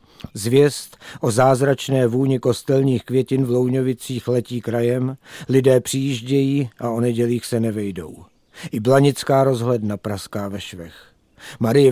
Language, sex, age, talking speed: Czech, male, 50-69, 120 wpm